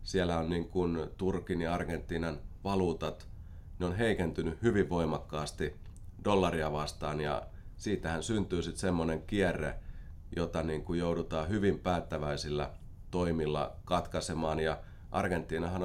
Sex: male